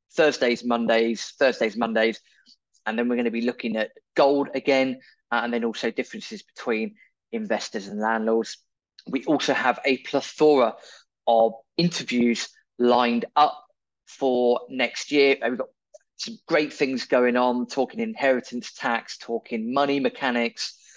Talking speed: 135 wpm